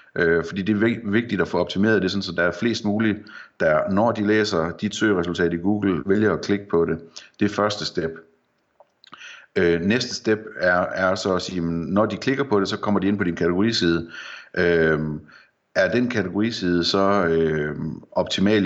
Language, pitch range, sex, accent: Danish, 85-105 Hz, male, native